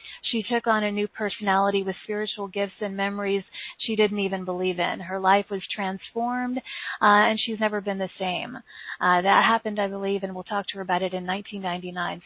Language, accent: English, American